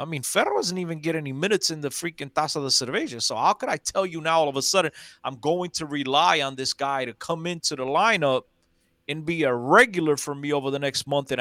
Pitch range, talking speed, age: 130-180 Hz, 250 wpm, 30-49